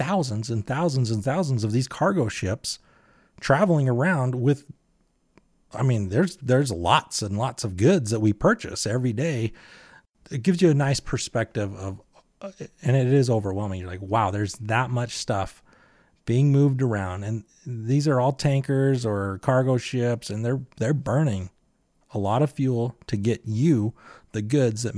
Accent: American